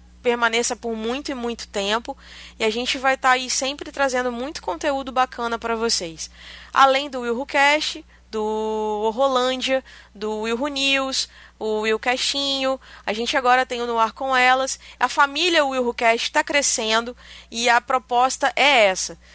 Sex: female